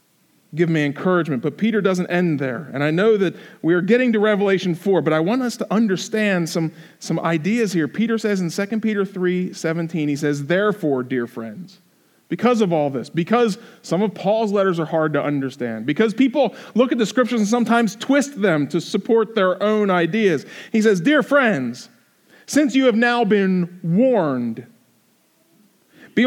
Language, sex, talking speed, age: English, male, 180 wpm, 40-59